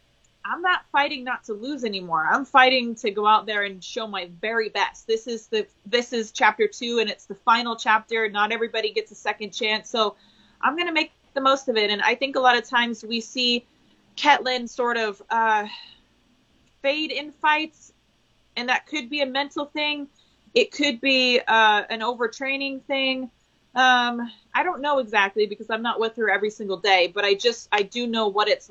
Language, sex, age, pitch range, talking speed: English, female, 30-49, 205-255 Hz, 200 wpm